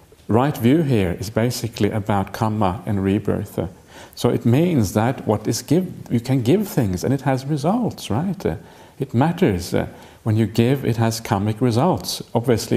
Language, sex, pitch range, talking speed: English, male, 105-130 Hz, 170 wpm